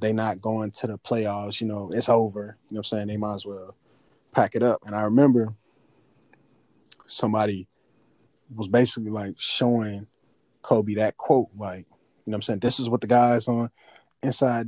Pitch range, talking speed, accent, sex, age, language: 110-130 Hz, 190 wpm, American, male, 20-39, English